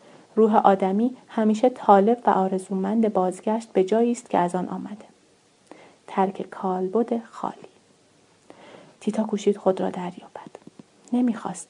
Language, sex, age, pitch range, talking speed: Persian, female, 30-49, 190-210 Hz, 120 wpm